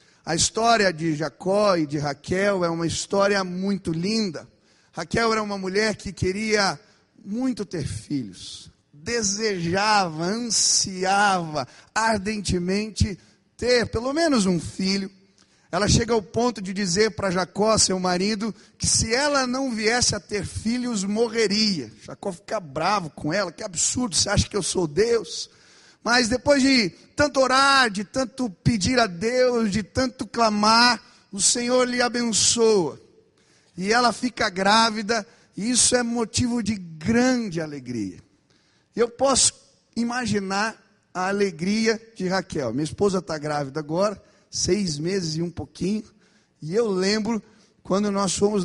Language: Spanish